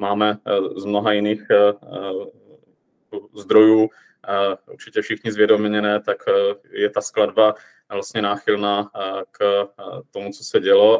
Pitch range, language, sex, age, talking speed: 95-115 Hz, Czech, male, 20-39, 105 wpm